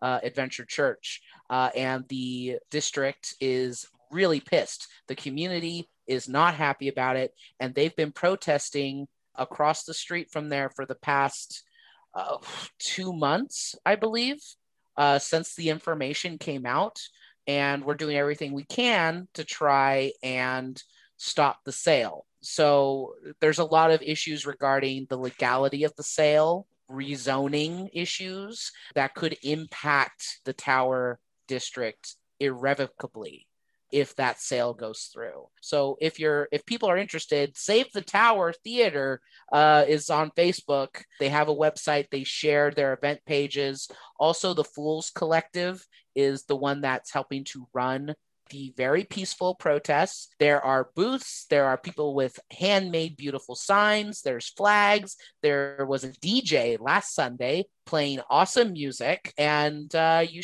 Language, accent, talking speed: English, American, 140 wpm